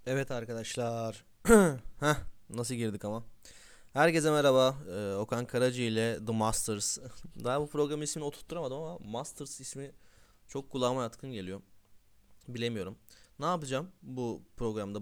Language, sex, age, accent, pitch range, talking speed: Turkish, male, 20-39, native, 105-145 Hz, 125 wpm